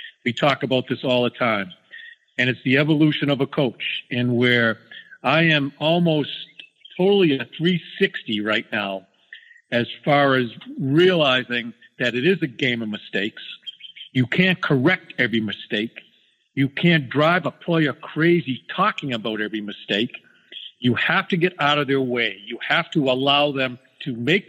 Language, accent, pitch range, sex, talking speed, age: English, American, 125-165 Hz, male, 160 wpm, 50-69